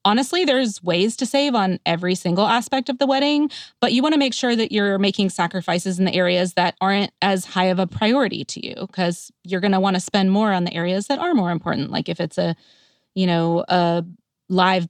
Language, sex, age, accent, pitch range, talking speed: English, female, 20-39, American, 180-230 Hz, 230 wpm